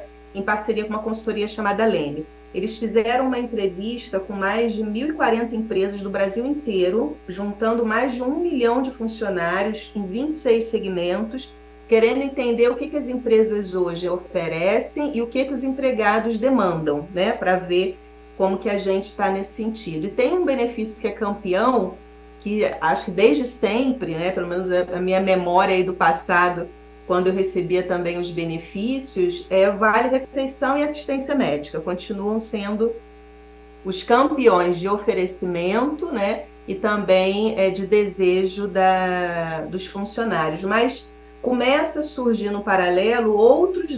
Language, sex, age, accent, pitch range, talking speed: Portuguese, female, 40-59, Brazilian, 180-230 Hz, 150 wpm